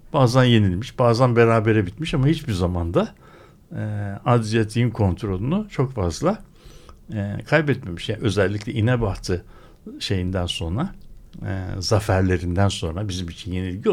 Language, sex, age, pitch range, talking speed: Turkish, male, 60-79, 95-125 Hz, 115 wpm